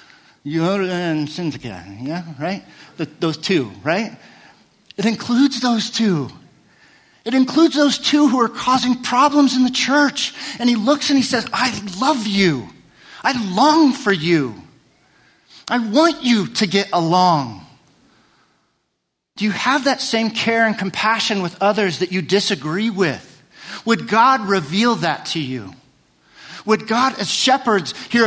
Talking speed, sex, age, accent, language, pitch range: 140 wpm, male, 40-59, American, English, 185-255 Hz